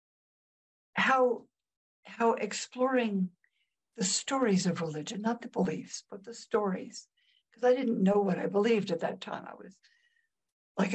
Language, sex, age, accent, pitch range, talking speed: English, female, 60-79, American, 180-220 Hz, 145 wpm